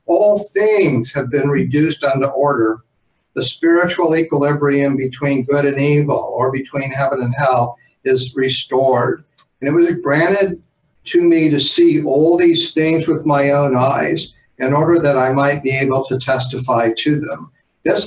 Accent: American